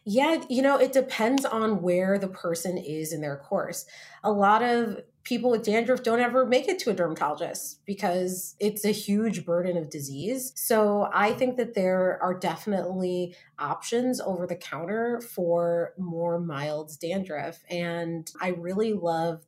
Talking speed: 160 wpm